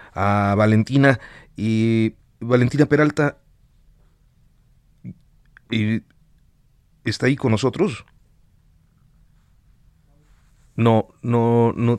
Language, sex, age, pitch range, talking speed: Spanish, male, 30-49, 95-115 Hz, 65 wpm